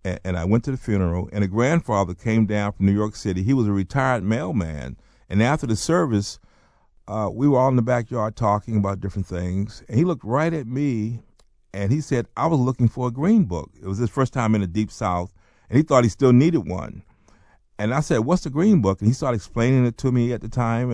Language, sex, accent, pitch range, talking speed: English, male, American, 95-120 Hz, 240 wpm